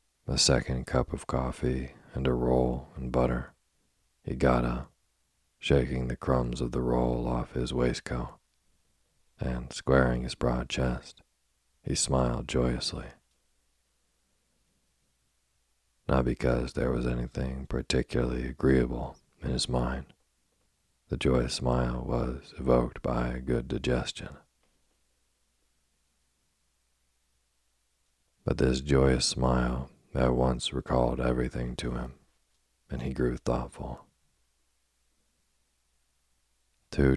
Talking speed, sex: 105 wpm, male